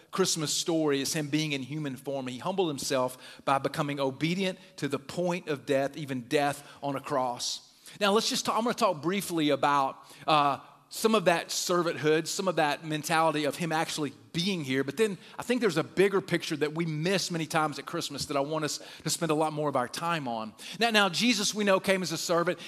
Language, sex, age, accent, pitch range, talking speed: English, male, 40-59, American, 140-180 Hz, 230 wpm